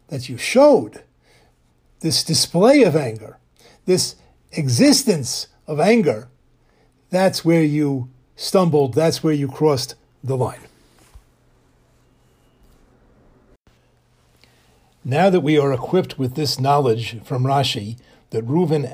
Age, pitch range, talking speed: 60-79, 125-155 Hz, 105 wpm